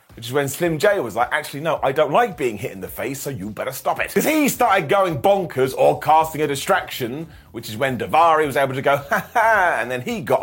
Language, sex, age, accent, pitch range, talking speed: English, male, 30-49, British, 135-205 Hz, 260 wpm